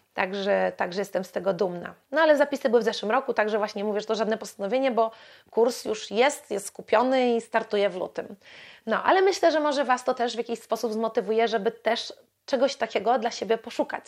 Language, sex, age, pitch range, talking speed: Polish, female, 30-49, 220-255 Hz, 215 wpm